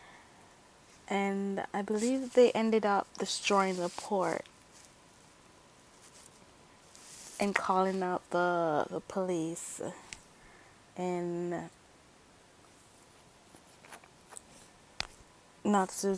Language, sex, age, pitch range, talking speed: English, female, 20-39, 175-210 Hz, 65 wpm